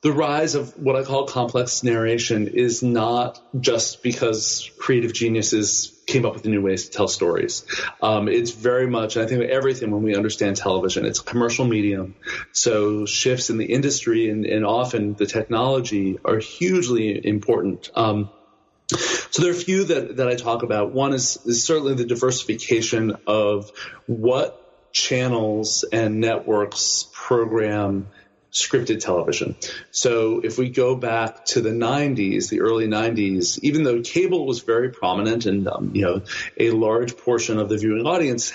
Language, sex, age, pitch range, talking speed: English, male, 30-49, 105-130 Hz, 160 wpm